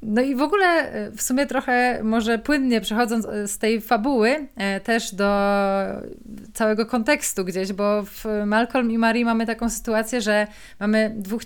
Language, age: Polish, 20-39